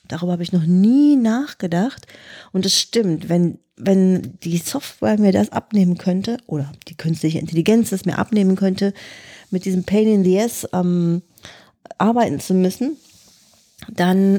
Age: 30-49